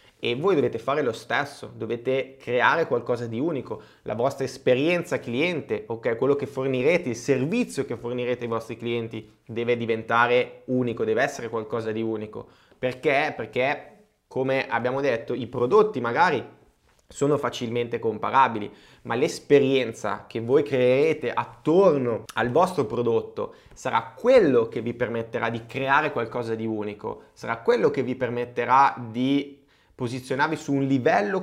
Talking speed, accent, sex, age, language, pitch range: 140 wpm, native, male, 20-39, Italian, 115-140 Hz